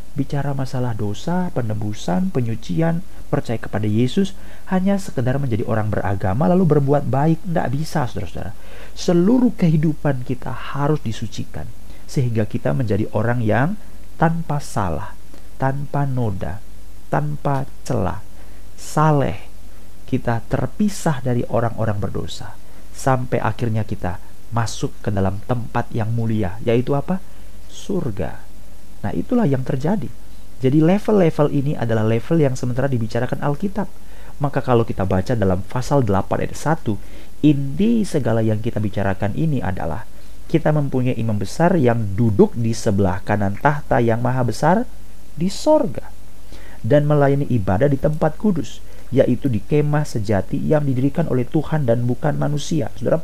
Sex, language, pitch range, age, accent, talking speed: male, Indonesian, 105-145 Hz, 40-59, native, 130 wpm